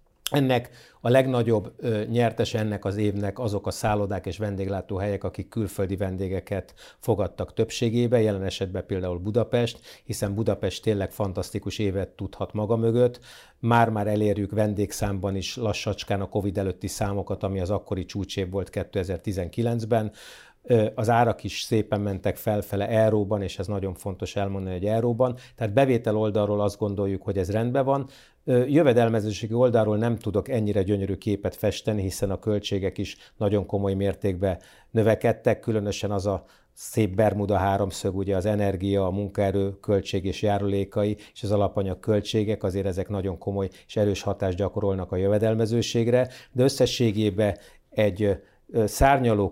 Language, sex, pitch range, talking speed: Hungarian, male, 100-115 Hz, 140 wpm